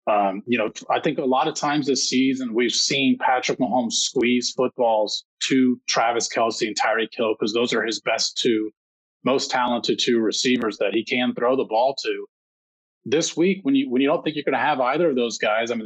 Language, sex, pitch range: English, male, 120-145 Hz